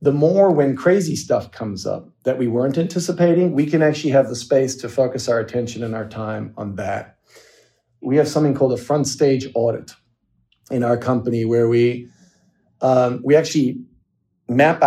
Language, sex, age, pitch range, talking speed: English, male, 40-59, 120-145 Hz, 175 wpm